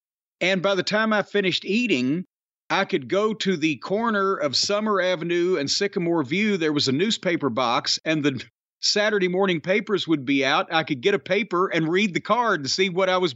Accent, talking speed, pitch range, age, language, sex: American, 205 wpm, 170-210 Hz, 50-69, English, male